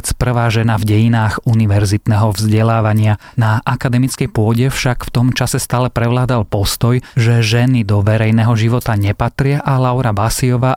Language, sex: Slovak, male